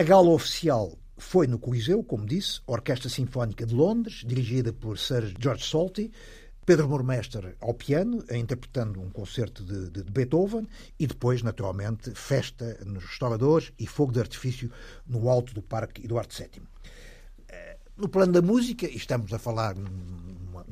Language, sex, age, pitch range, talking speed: Portuguese, male, 50-69, 100-140 Hz, 155 wpm